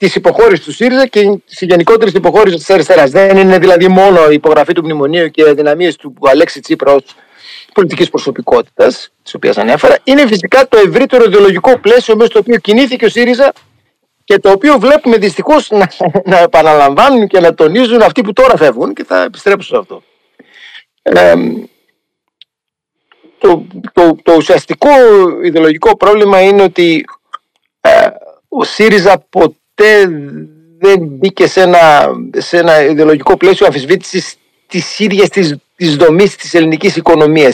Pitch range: 175-250 Hz